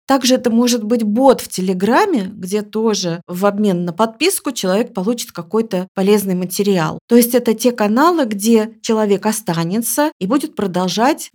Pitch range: 195-255 Hz